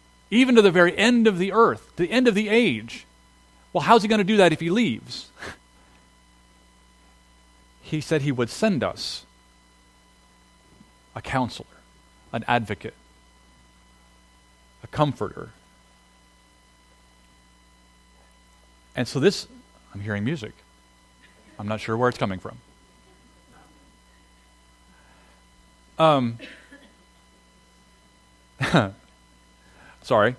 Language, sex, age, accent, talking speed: English, male, 40-59, American, 100 wpm